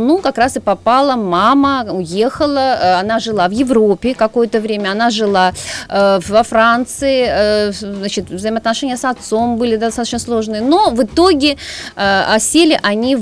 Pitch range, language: 185-255 Hz, Russian